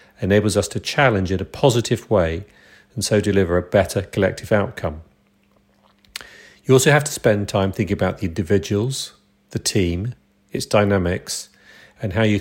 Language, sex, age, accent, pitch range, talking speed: English, male, 40-59, British, 100-115 Hz, 155 wpm